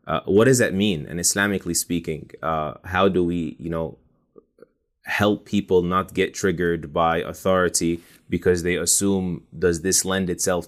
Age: 20-39